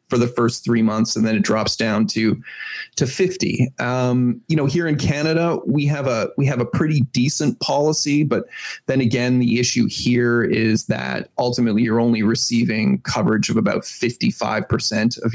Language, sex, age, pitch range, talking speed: English, male, 30-49, 120-155 Hz, 175 wpm